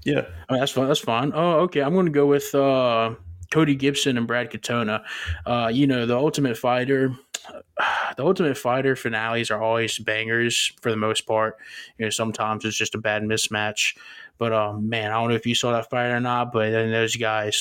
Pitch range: 110-120 Hz